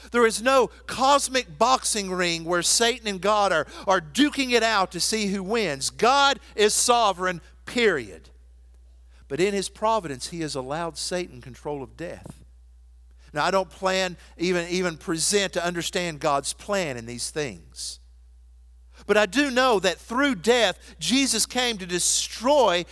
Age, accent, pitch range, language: 50-69, American, 140-235 Hz, English